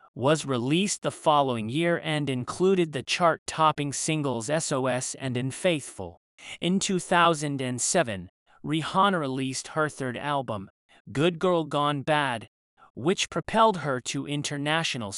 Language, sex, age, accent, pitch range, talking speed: English, male, 40-59, American, 130-170 Hz, 115 wpm